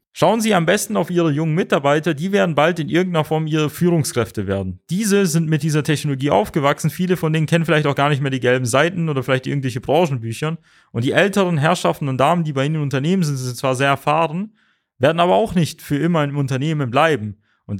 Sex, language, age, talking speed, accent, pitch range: male, German, 30-49, 225 wpm, German, 135-175 Hz